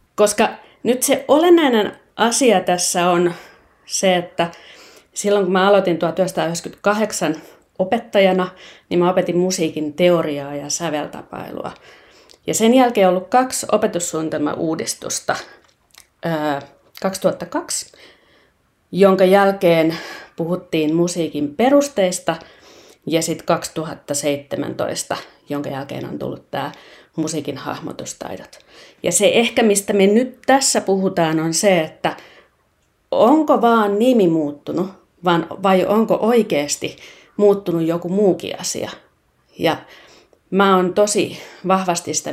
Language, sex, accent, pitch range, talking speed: Finnish, female, native, 160-210 Hz, 105 wpm